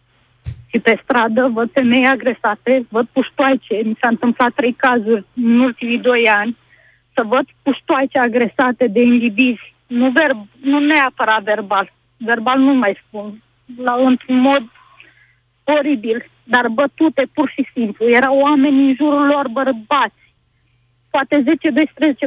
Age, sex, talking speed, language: 20-39, female, 125 wpm, Romanian